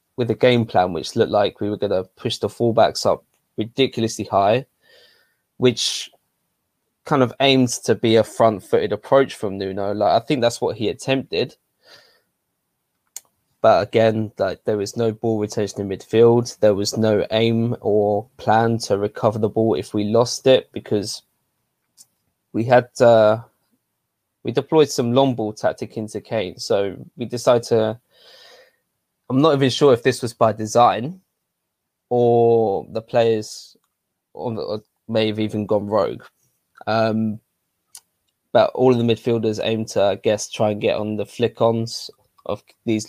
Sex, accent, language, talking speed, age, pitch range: male, British, English, 155 wpm, 20-39, 110-120 Hz